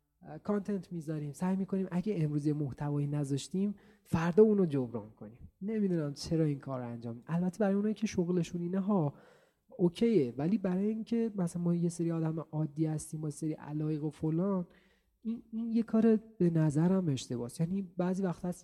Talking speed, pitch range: 175 wpm, 140-195 Hz